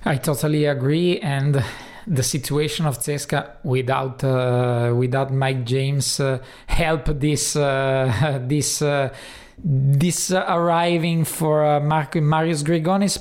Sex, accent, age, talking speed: male, native, 20-39, 120 wpm